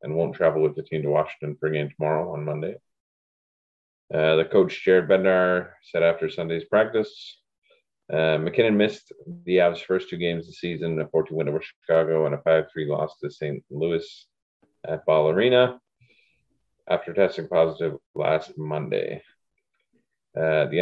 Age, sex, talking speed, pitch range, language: 30-49, male, 160 wpm, 80-95 Hz, English